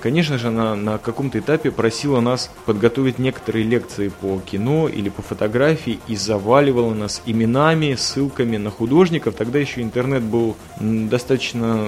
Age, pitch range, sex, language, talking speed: 20-39, 110-135 Hz, male, Russian, 145 wpm